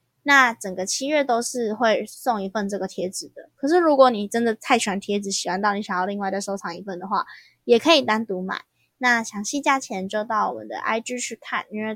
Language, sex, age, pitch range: Chinese, female, 10-29, 195-245 Hz